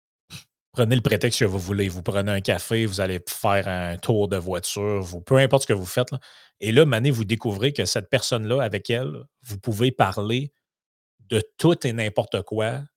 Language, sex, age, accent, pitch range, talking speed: French, male, 30-49, Canadian, 100-130 Hz, 190 wpm